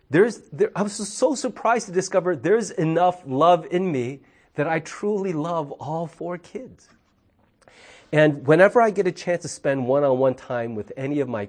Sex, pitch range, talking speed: male, 110-160 Hz, 180 wpm